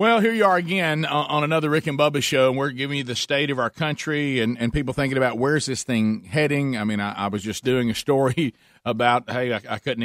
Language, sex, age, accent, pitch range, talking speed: English, male, 40-59, American, 115-145 Hz, 265 wpm